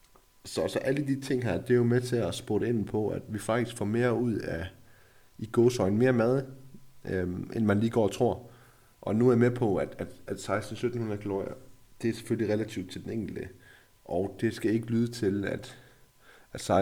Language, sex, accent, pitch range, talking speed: Danish, male, native, 95-120 Hz, 210 wpm